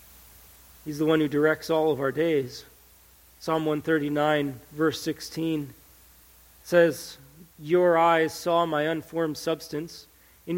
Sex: male